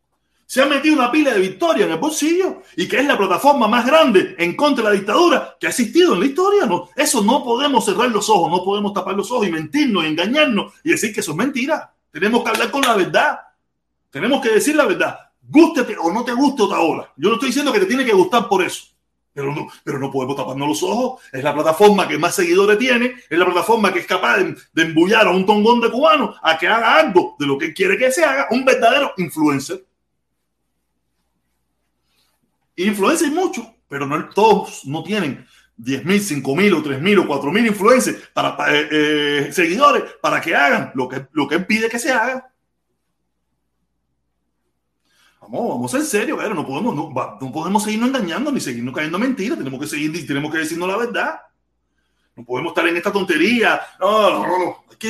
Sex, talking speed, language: male, 205 wpm, Spanish